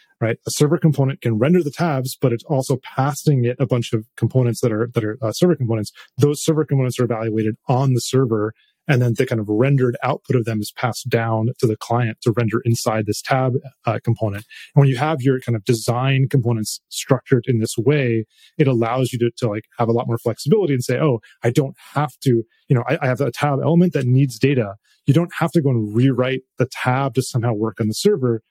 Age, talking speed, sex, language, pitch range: 30-49, 235 wpm, male, English, 115-135 Hz